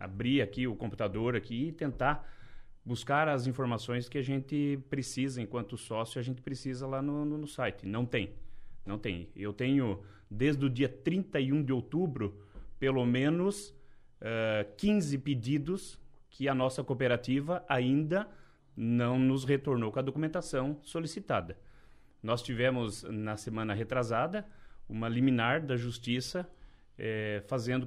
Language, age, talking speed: Portuguese, 30-49, 135 wpm